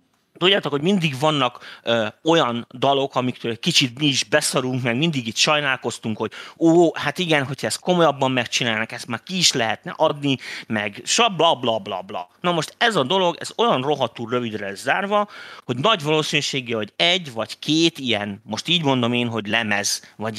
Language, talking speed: Hungarian, 185 wpm